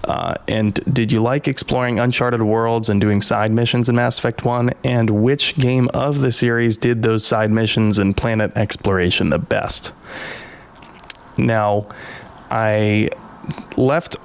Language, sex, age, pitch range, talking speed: English, male, 20-39, 105-130 Hz, 145 wpm